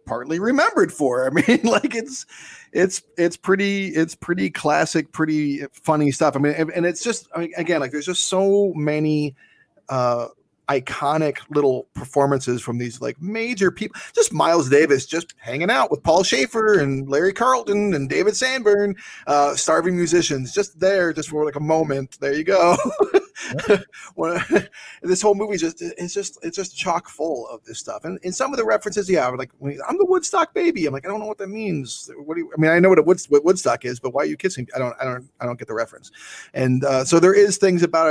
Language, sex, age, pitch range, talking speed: English, male, 30-49, 135-195 Hz, 205 wpm